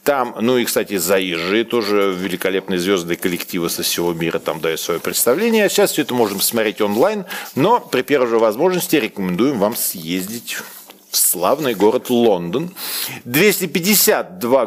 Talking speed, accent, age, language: 145 wpm, native, 40-59, Russian